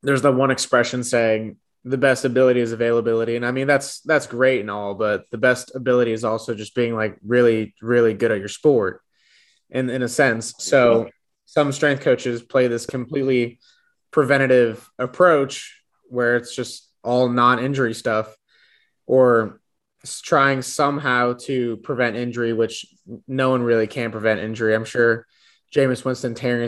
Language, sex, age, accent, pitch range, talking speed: English, male, 20-39, American, 110-130 Hz, 155 wpm